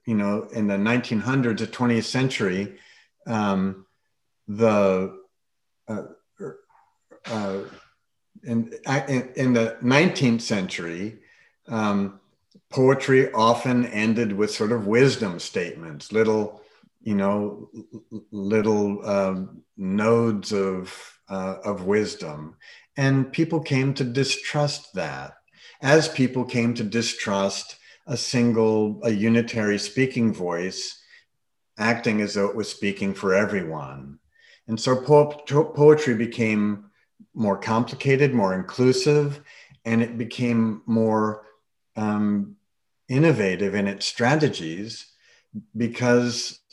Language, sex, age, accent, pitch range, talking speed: English, male, 50-69, American, 105-125 Hz, 105 wpm